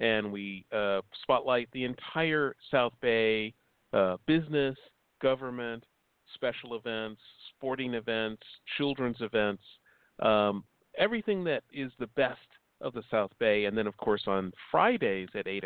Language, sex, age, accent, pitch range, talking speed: English, male, 40-59, American, 105-130 Hz, 135 wpm